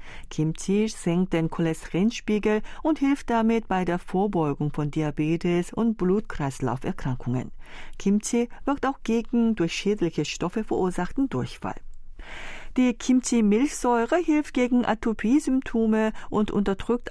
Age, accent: 40-59, German